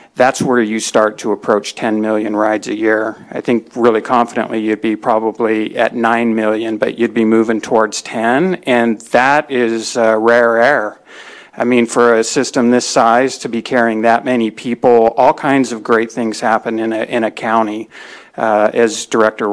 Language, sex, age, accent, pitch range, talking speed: English, male, 50-69, American, 110-120 Hz, 185 wpm